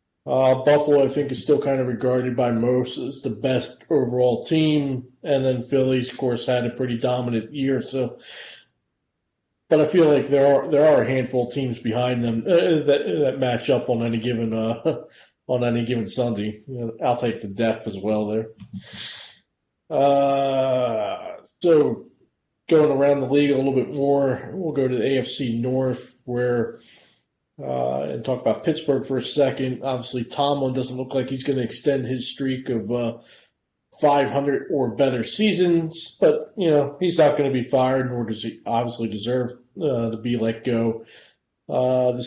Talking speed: 175 wpm